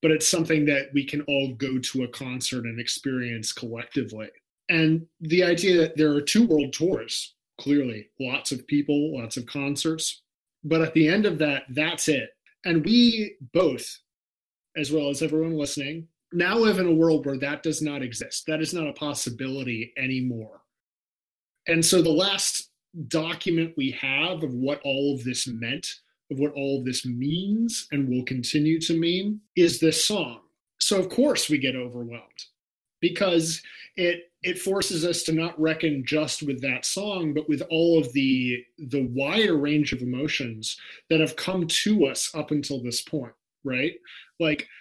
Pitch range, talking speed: 135-170 Hz, 170 wpm